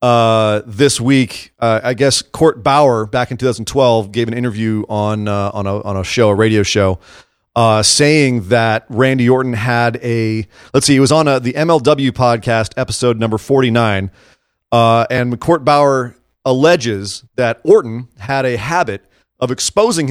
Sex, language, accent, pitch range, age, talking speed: male, English, American, 115-155 Hz, 30-49, 160 wpm